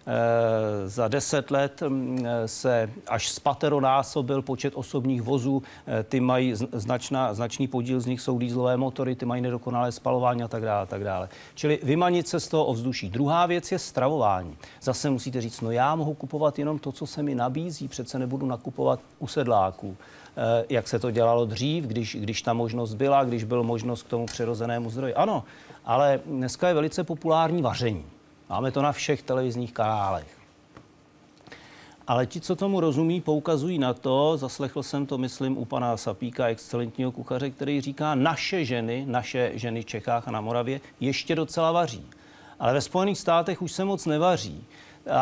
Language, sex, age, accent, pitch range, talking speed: Czech, male, 40-59, native, 120-150 Hz, 170 wpm